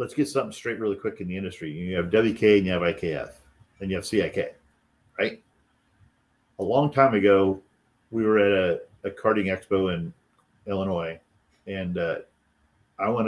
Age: 40-59